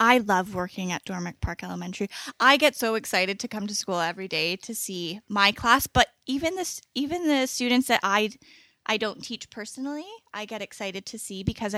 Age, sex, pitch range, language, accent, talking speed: 10-29, female, 195-245 Hz, English, American, 200 wpm